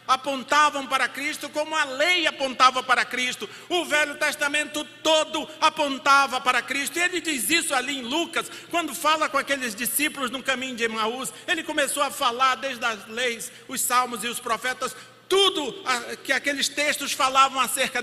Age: 50-69